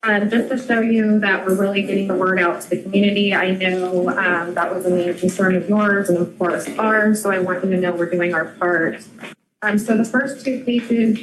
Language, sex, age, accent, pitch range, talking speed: English, female, 20-39, American, 185-220 Hz, 240 wpm